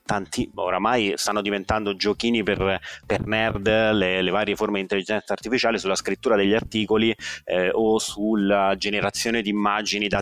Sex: male